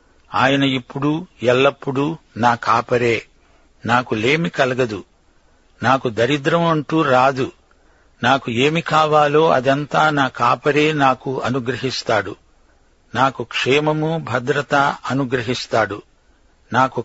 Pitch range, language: 120-150 Hz, Telugu